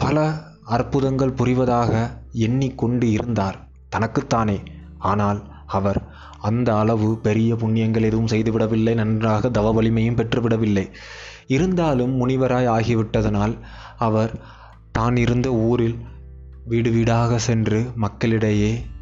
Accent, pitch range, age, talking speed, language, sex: native, 110-130 Hz, 20-39, 90 wpm, Tamil, male